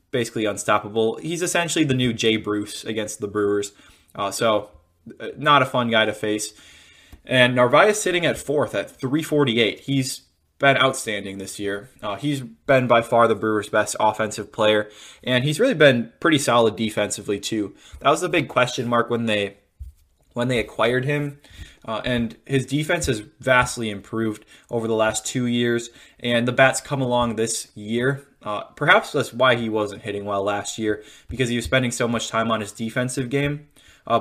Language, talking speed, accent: English, 180 wpm, American